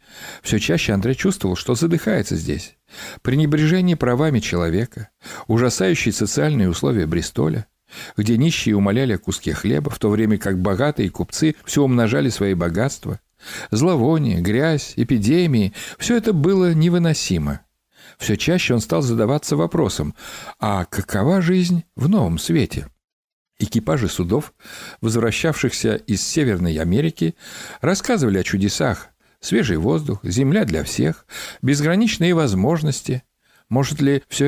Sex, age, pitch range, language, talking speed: male, 60-79, 100-165 Hz, Russian, 120 wpm